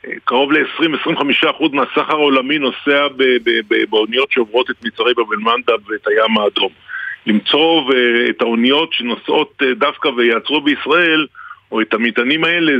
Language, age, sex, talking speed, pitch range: Hebrew, 50-69, male, 125 wpm, 125-170 Hz